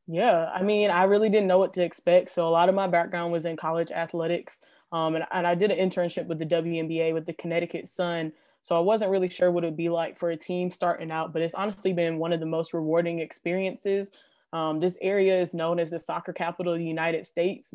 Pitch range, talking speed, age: 165-180 Hz, 240 wpm, 20-39